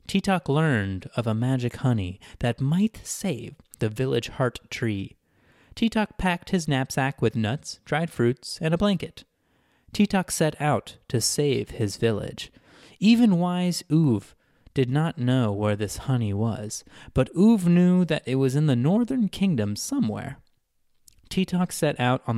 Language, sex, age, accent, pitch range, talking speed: English, male, 20-39, American, 110-165 Hz, 150 wpm